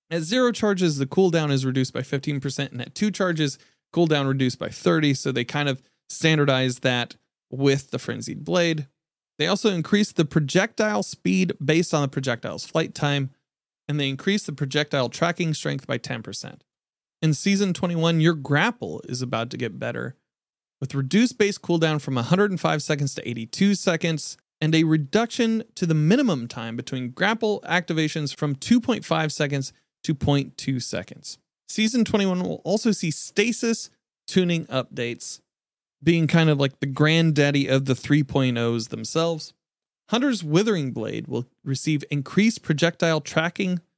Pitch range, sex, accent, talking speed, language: 135-185 Hz, male, American, 145 wpm, English